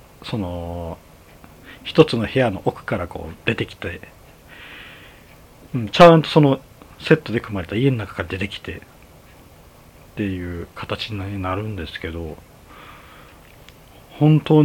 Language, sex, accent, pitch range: Japanese, male, native, 85-145 Hz